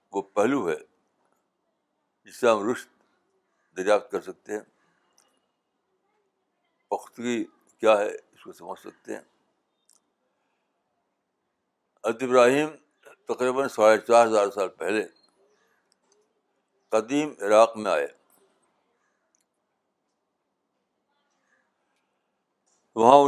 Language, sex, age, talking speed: Urdu, male, 60-79, 75 wpm